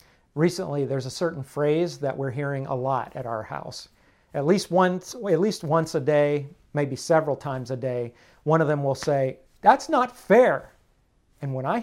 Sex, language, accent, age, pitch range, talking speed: male, English, American, 50-69, 135-175 Hz, 190 wpm